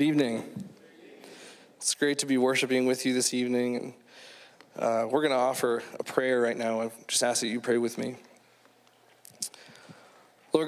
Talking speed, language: 155 wpm, English